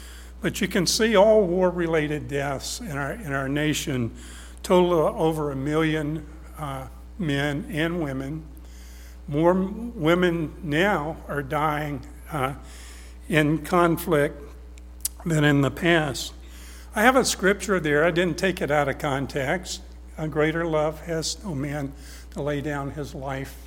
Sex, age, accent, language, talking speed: male, 60-79, American, English, 140 wpm